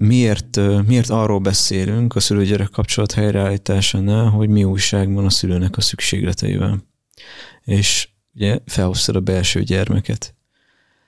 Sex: male